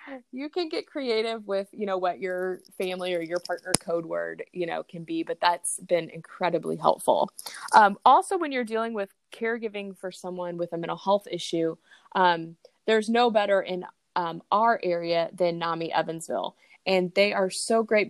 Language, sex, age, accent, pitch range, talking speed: English, female, 20-39, American, 170-200 Hz, 180 wpm